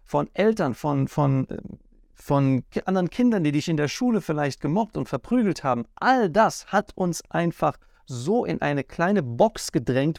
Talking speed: 160 wpm